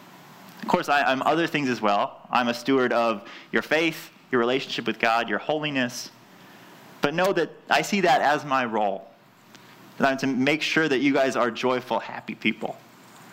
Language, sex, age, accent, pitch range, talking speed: English, male, 30-49, American, 135-190 Hz, 180 wpm